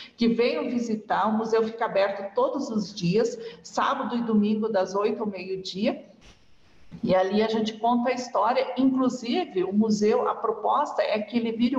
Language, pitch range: English, 205-245 Hz